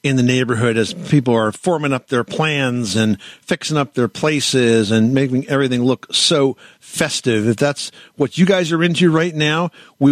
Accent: American